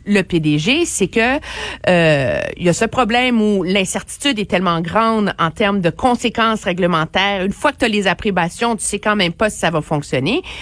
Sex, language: female, French